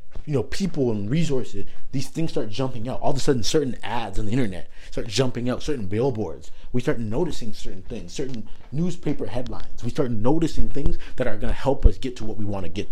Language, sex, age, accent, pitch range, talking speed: English, male, 30-49, American, 105-135 Hz, 230 wpm